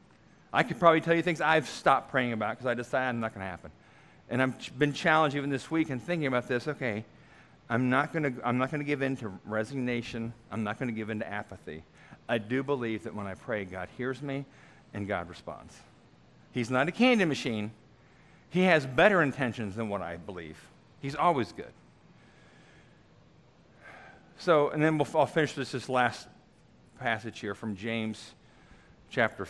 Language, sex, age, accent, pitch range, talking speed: English, male, 50-69, American, 115-160 Hz, 190 wpm